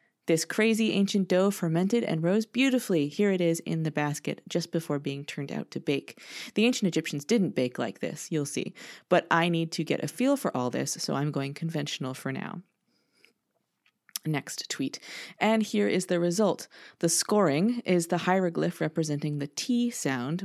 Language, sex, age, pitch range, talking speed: English, female, 30-49, 155-215 Hz, 180 wpm